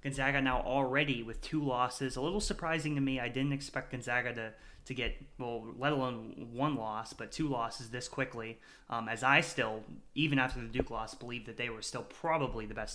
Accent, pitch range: American, 115-130 Hz